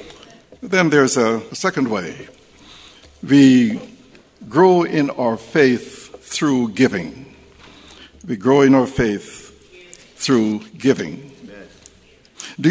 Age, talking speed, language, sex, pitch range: 60-79, 95 wpm, English, male, 125-195 Hz